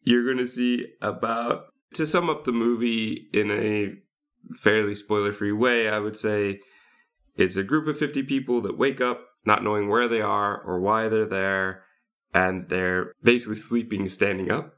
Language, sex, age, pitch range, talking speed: English, male, 20-39, 95-120 Hz, 175 wpm